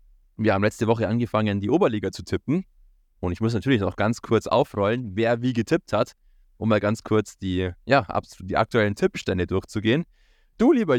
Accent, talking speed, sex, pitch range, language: German, 175 wpm, male, 95-125 Hz, German